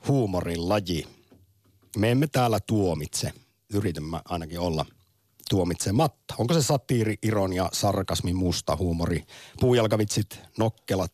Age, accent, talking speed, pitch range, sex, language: 50-69, native, 100 wpm, 90-125 Hz, male, Finnish